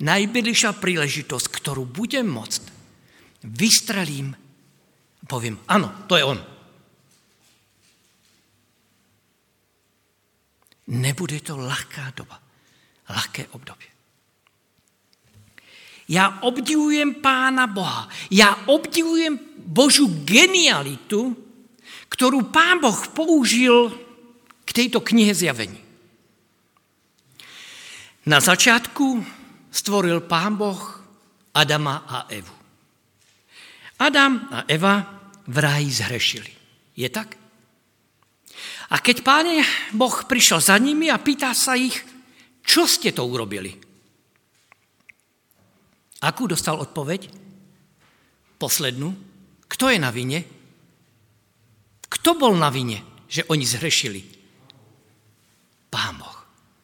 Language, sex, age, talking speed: Slovak, male, 50-69, 85 wpm